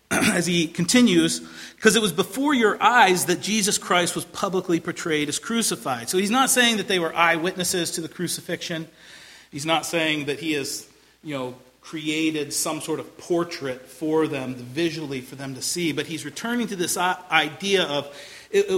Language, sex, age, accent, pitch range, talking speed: English, male, 40-59, American, 160-235 Hz, 180 wpm